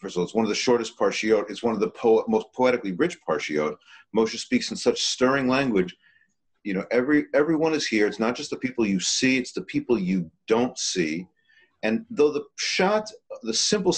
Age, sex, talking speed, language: 40-59, male, 210 wpm, English